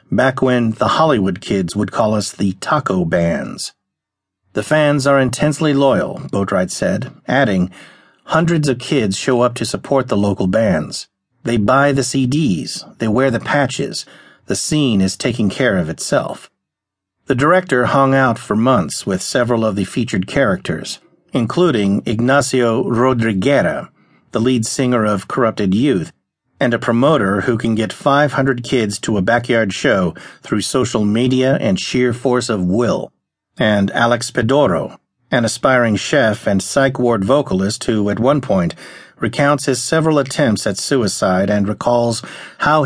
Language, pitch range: English, 105-135 Hz